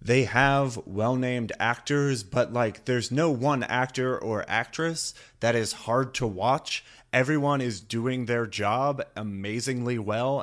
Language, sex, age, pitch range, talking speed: English, male, 30-49, 115-135 Hz, 140 wpm